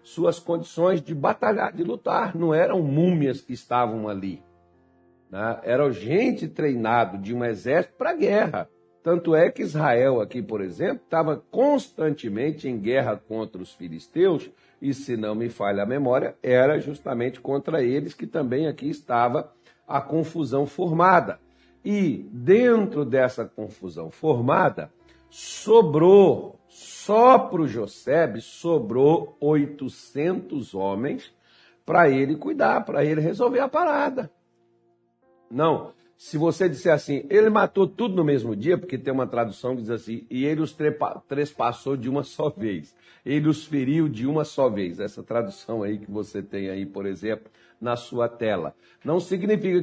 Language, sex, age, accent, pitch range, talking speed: Portuguese, male, 60-79, Brazilian, 115-160 Hz, 145 wpm